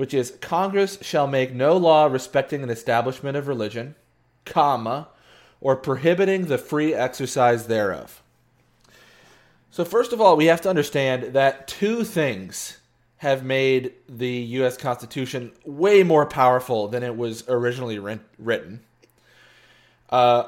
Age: 30-49